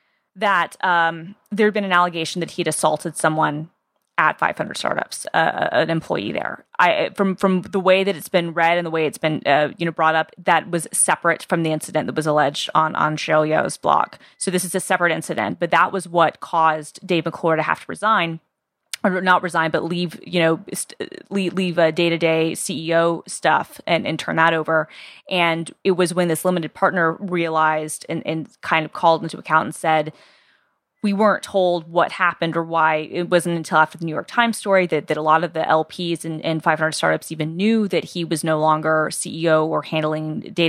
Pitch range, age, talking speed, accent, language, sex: 160-185 Hz, 20-39, 210 wpm, American, English, female